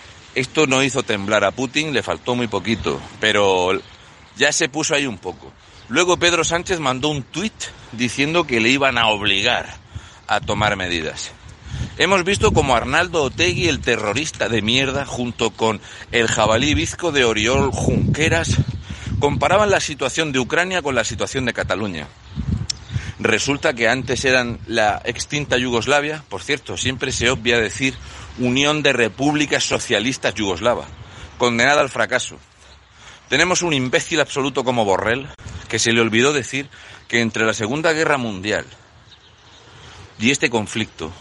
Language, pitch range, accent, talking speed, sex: Spanish, 110-145 Hz, Spanish, 145 wpm, male